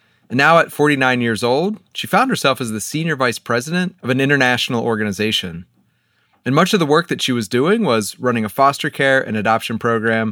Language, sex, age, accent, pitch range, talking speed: English, male, 30-49, American, 105-145 Hz, 205 wpm